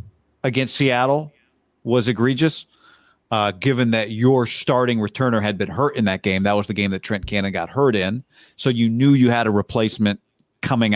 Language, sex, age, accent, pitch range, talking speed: English, male, 40-59, American, 110-130 Hz, 185 wpm